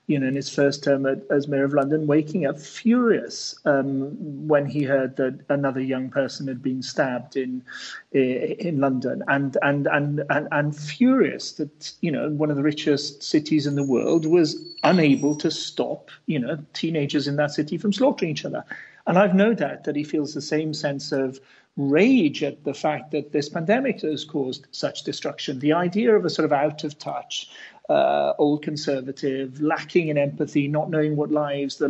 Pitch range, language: 140-170 Hz, English